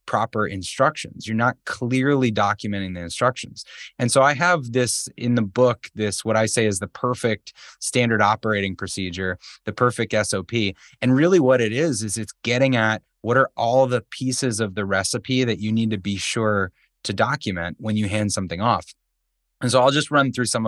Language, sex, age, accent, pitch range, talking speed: English, male, 20-39, American, 100-130 Hz, 190 wpm